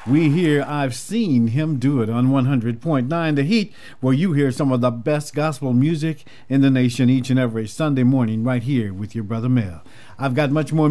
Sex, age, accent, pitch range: male, 50-69, American, 125-160 Hz